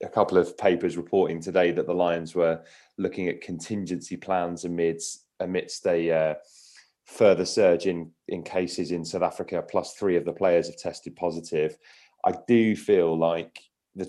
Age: 30-49